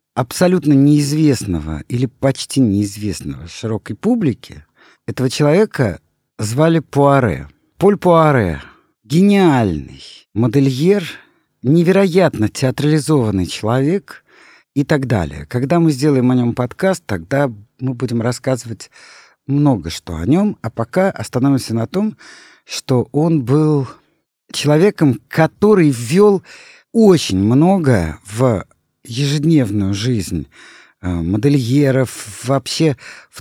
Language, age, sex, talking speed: Russian, 50-69, male, 100 wpm